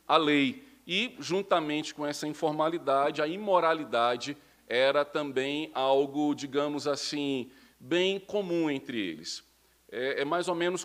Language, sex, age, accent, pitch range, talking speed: Portuguese, male, 40-59, Brazilian, 135-160 Hz, 125 wpm